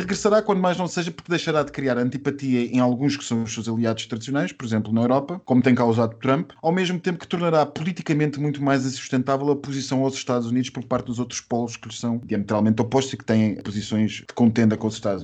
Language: Portuguese